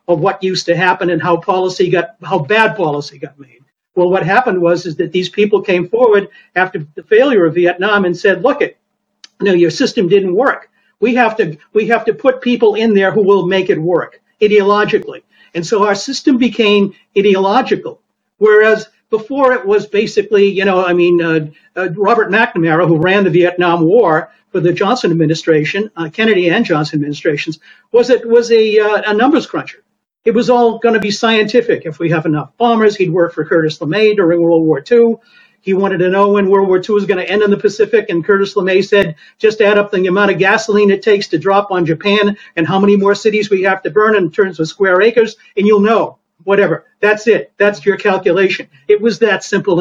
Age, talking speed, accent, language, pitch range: 50-69, 210 wpm, American, English, 175-215 Hz